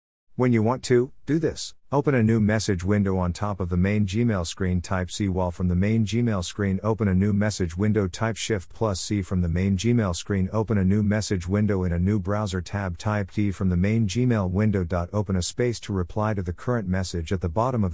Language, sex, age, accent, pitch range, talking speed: English, male, 50-69, American, 90-110 Hz, 235 wpm